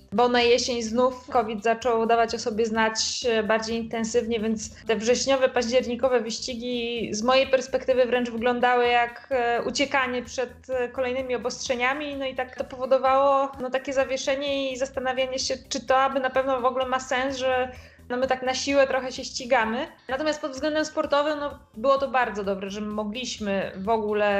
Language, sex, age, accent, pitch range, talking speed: Polish, female, 20-39, native, 220-260 Hz, 160 wpm